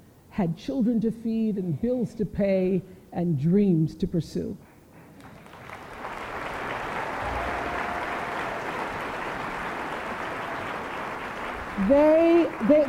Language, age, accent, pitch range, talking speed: English, 50-69, American, 185-260 Hz, 60 wpm